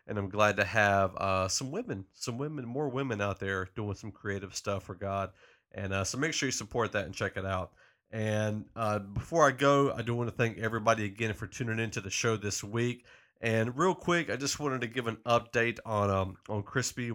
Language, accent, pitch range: English, American, 100-120 Hz